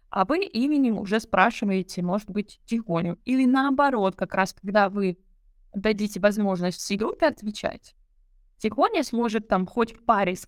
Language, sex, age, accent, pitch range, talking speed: Russian, female, 20-39, native, 190-240 Hz, 145 wpm